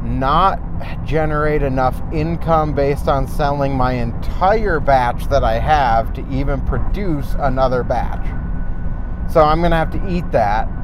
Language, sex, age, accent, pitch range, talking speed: English, male, 30-49, American, 90-145 Hz, 140 wpm